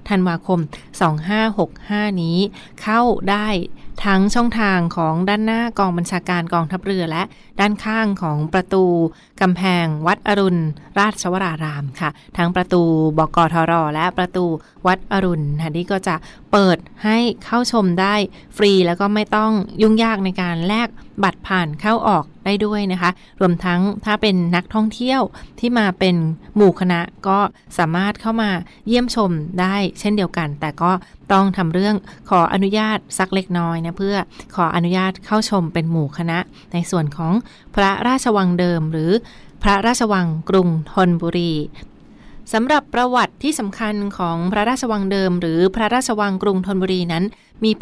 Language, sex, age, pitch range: Thai, female, 20-39, 170-210 Hz